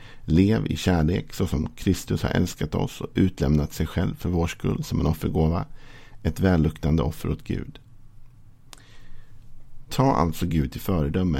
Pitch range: 80-110 Hz